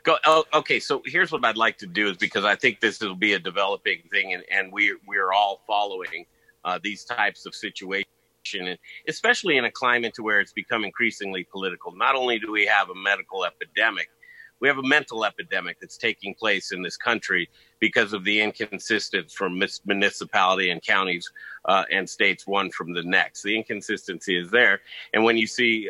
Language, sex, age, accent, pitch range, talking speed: English, male, 50-69, American, 105-145 Hz, 190 wpm